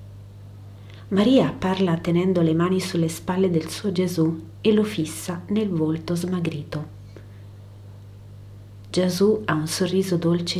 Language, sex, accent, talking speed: Italian, female, native, 120 wpm